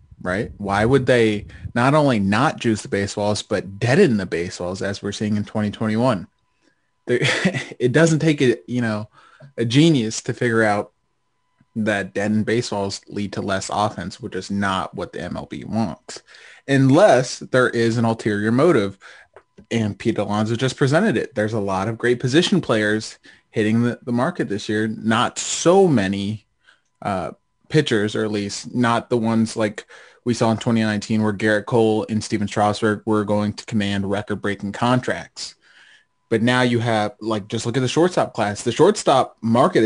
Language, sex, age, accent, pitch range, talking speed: English, male, 20-39, American, 100-120 Hz, 165 wpm